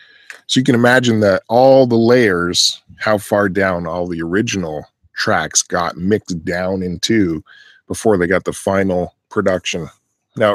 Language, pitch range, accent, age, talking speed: English, 90-115 Hz, American, 10-29, 150 wpm